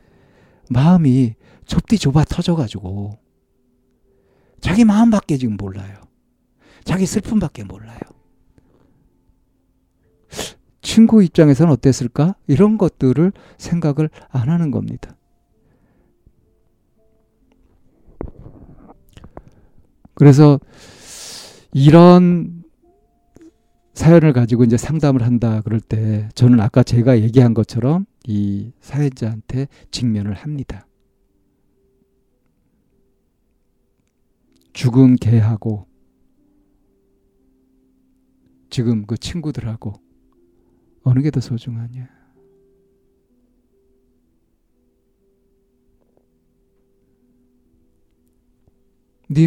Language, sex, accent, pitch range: Korean, male, native, 100-140 Hz